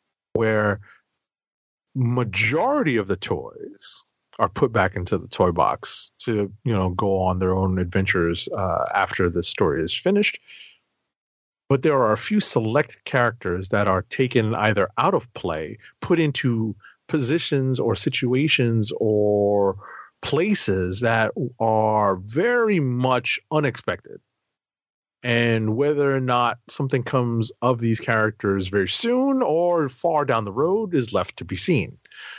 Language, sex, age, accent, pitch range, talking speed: English, male, 30-49, American, 105-145 Hz, 135 wpm